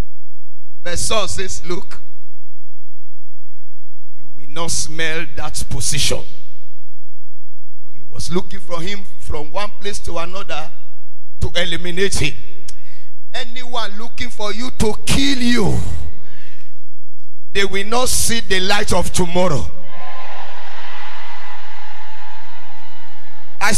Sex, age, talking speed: male, 50-69, 100 wpm